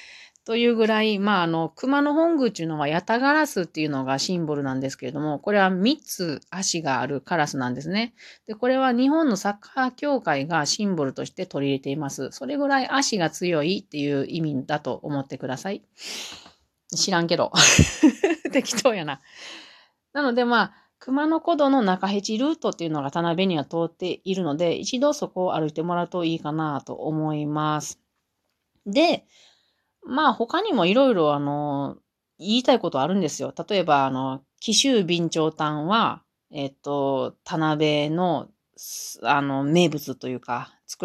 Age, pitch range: 40-59, 150-230 Hz